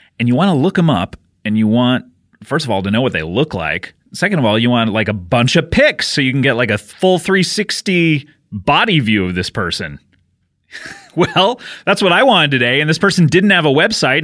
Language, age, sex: English, 30-49, male